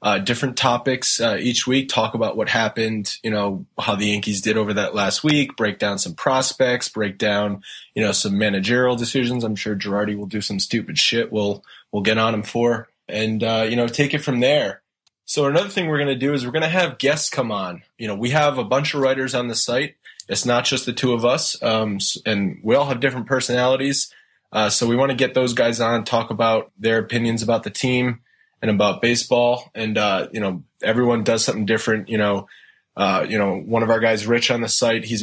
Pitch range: 105-125 Hz